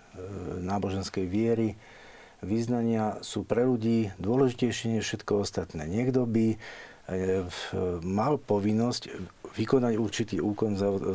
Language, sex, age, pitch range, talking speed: Slovak, male, 50-69, 95-120 Hz, 95 wpm